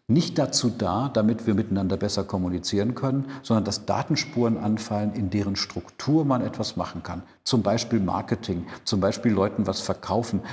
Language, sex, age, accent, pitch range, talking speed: German, male, 50-69, German, 105-130 Hz, 160 wpm